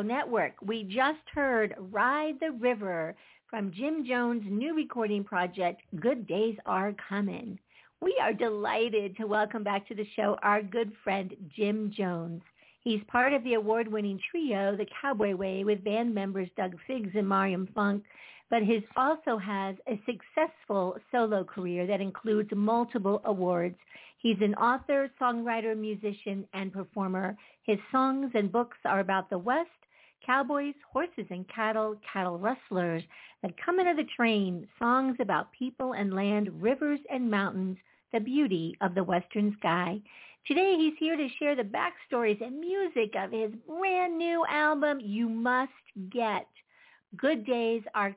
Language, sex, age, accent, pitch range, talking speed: English, female, 50-69, American, 195-255 Hz, 150 wpm